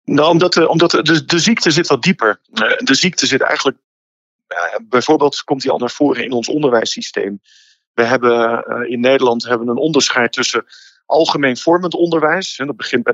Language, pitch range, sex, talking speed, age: Dutch, 125-175 Hz, male, 165 wpm, 50-69